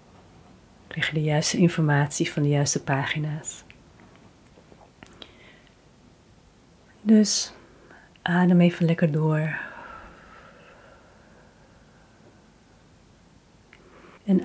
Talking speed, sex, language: 60 wpm, female, Dutch